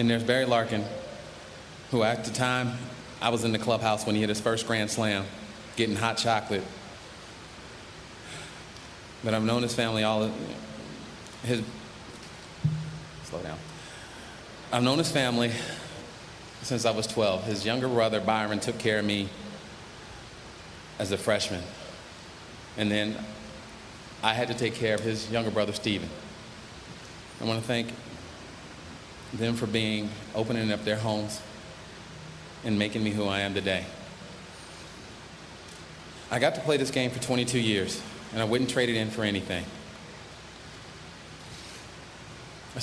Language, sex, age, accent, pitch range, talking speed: English, male, 30-49, American, 105-125 Hz, 140 wpm